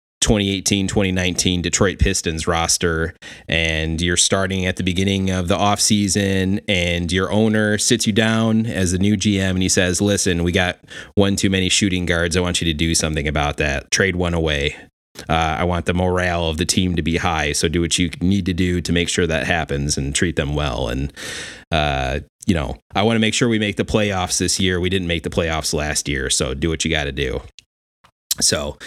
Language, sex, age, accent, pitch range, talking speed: English, male, 30-49, American, 85-100 Hz, 215 wpm